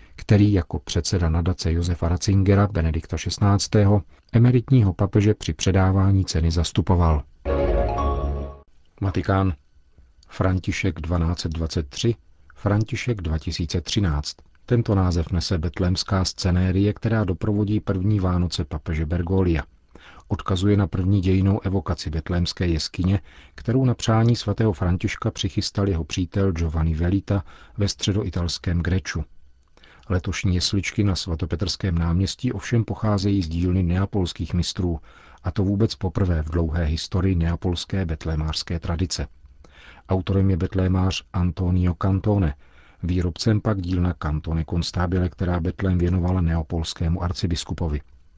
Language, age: Czech, 40-59